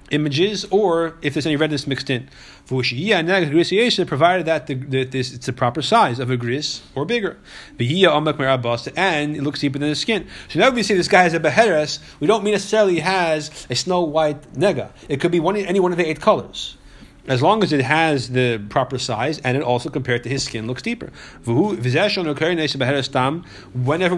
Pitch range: 130-175 Hz